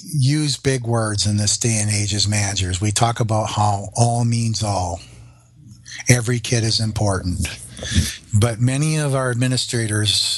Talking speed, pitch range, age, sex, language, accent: 150 wpm, 110-125 Hz, 50-69, male, English, American